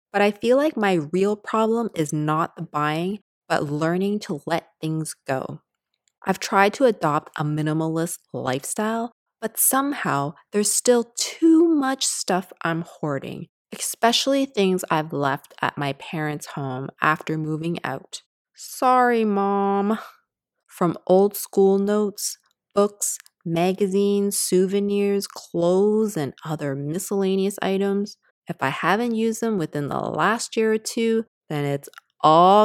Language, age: English, 20-39